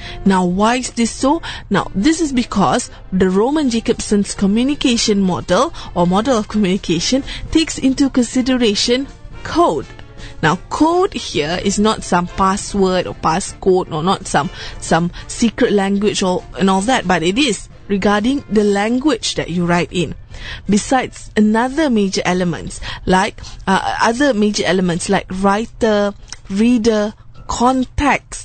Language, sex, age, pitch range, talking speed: English, female, 20-39, 190-255 Hz, 135 wpm